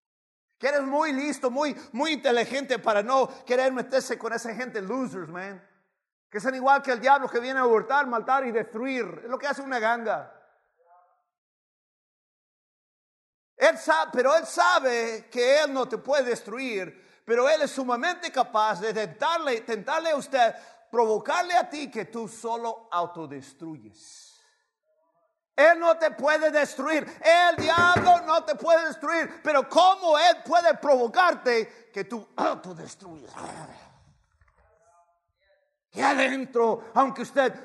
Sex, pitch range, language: male, 230-310 Hz, English